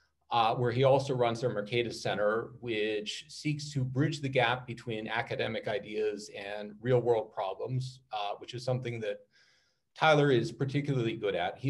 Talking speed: 160 wpm